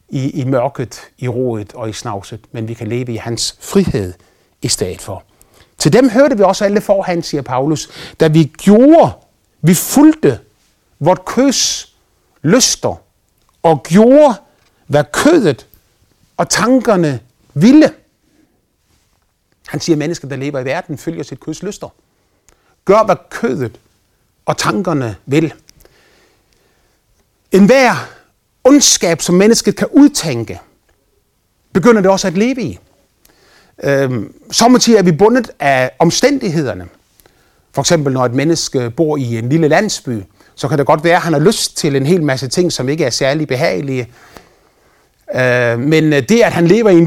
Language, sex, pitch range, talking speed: Danish, male, 130-195 Hz, 145 wpm